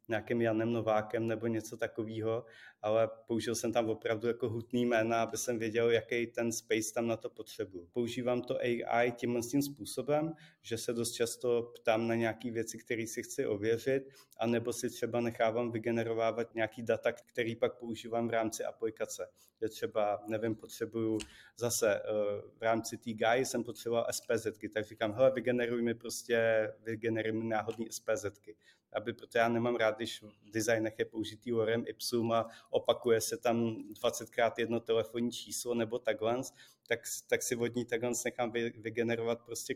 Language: Czech